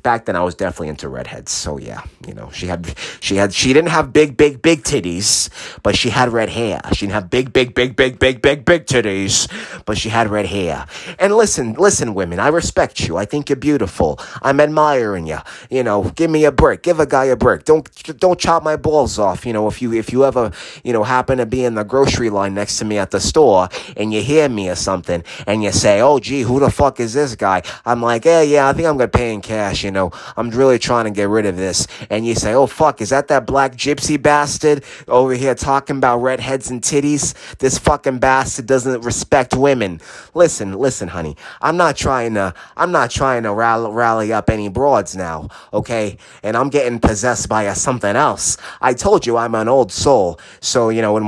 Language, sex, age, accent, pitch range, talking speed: English, male, 30-49, American, 105-140 Hz, 230 wpm